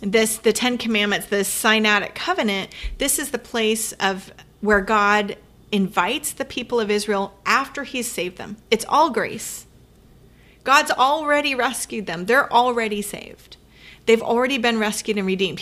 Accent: American